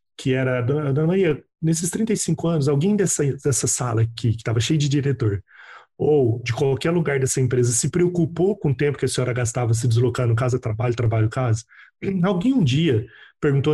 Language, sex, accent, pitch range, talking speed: Portuguese, male, Brazilian, 120-165 Hz, 175 wpm